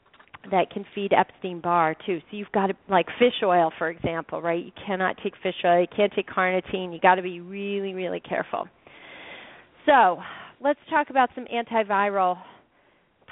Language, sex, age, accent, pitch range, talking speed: English, female, 40-59, American, 185-225 Hz, 165 wpm